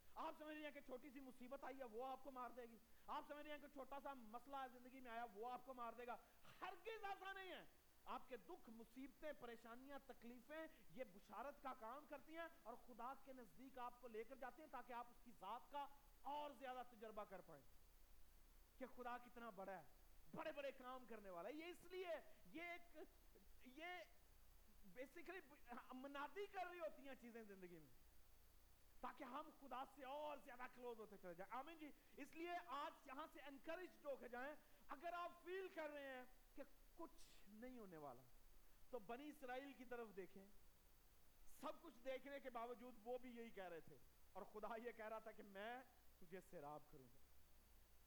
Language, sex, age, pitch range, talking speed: Urdu, male, 40-59, 225-300 Hz, 40 wpm